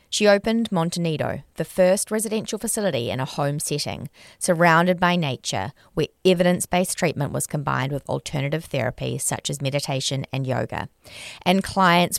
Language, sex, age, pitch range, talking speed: English, female, 30-49, 135-185 Hz, 145 wpm